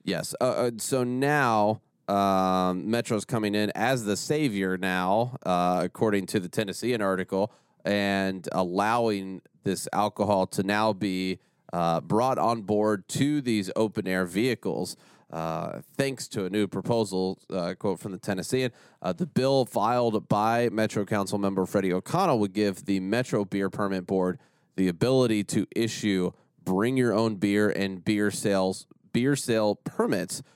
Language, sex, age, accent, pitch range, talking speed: English, male, 30-49, American, 95-115 Hz, 150 wpm